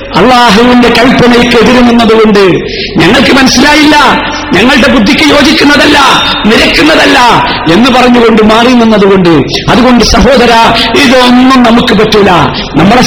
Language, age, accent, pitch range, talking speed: Malayalam, 50-69, native, 190-255 Hz, 85 wpm